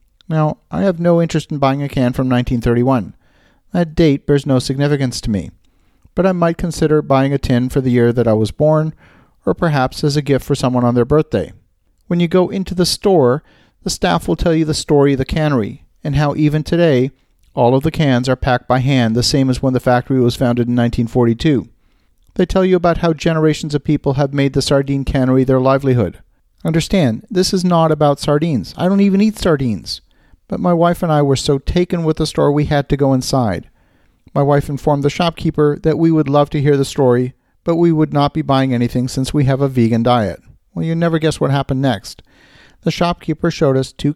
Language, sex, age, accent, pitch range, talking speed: English, male, 50-69, American, 125-155 Hz, 215 wpm